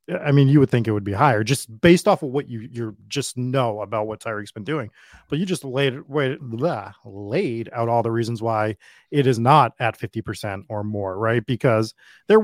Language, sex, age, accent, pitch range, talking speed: English, male, 30-49, American, 115-155 Hz, 215 wpm